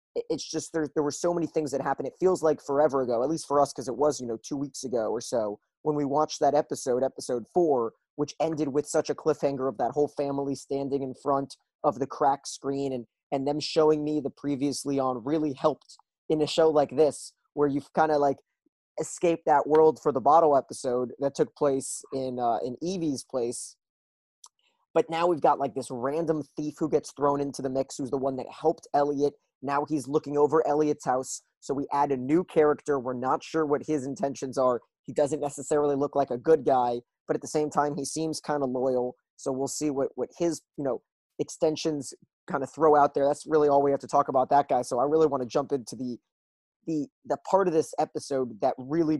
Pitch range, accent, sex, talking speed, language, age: 135-155 Hz, American, male, 225 wpm, English, 20-39